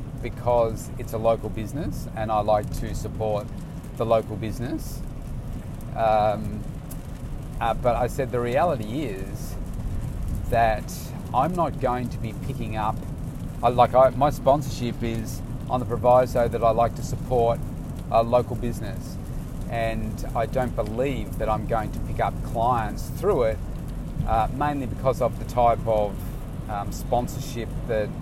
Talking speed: 140 wpm